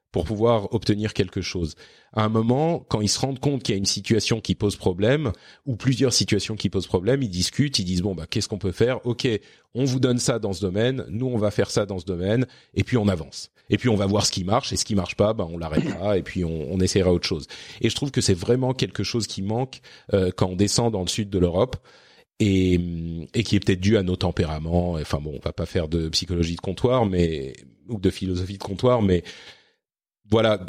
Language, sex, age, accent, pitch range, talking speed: French, male, 40-59, French, 95-120 Hz, 250 wpm